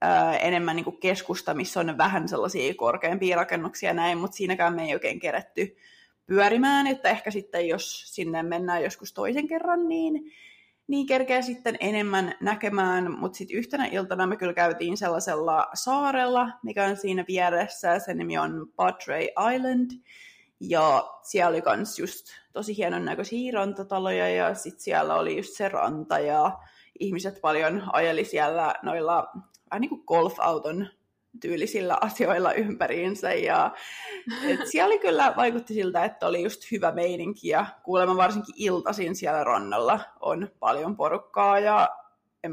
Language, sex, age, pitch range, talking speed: Finnish, female, 20-39, 180-250 Hz, 145 wpm